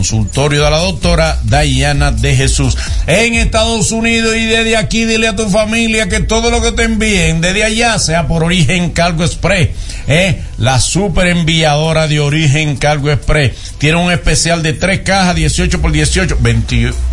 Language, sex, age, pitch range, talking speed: Spanish, male, 60-79, 120-170 Hz, 170 wpm